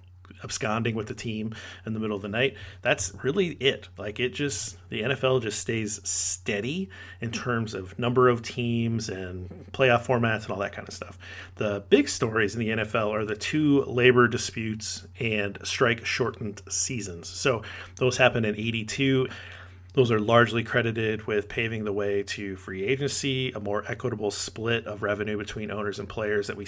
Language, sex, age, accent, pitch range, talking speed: English, male, 30-49, American, 100-120 Hz, 180 wpm